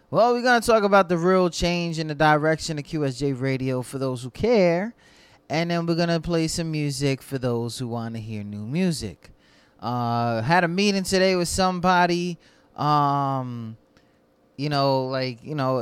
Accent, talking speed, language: American, 180 wpm, English